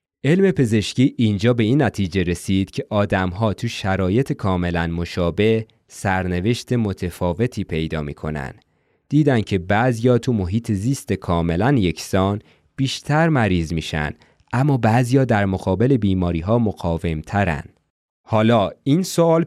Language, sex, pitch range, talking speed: Persian, male, 95-125 Hz, 125 wpm